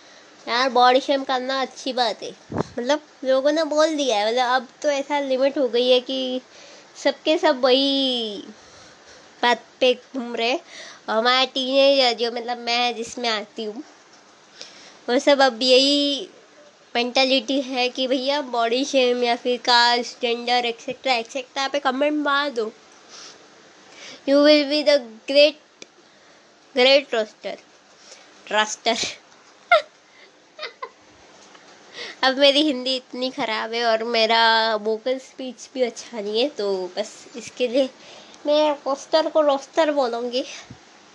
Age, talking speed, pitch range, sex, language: 20-39, 130 wpm, 230-275 Hz, male, Hindi